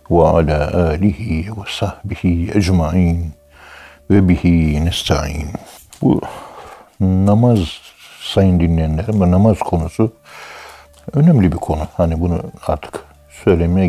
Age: 60-79